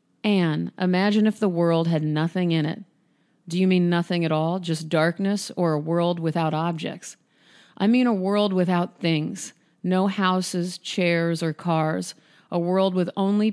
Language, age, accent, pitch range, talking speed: English, 40-59, American, 160-190 Hz, 165 wpm